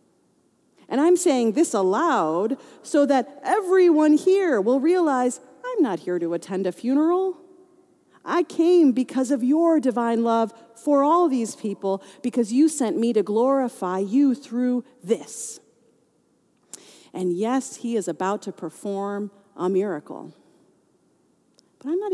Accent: American